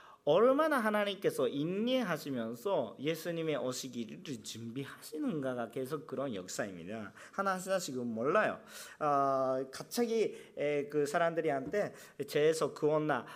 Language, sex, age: Korean, male, 40-59